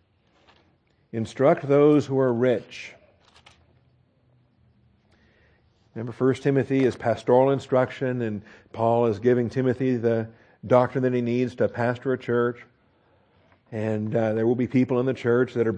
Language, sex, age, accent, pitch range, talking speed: English, male, 50-69, American, 110-150 Hz, 135 wpm